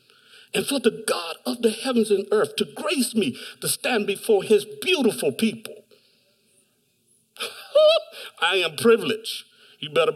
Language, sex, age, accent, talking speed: English, male, 60-79, American, 135 wpm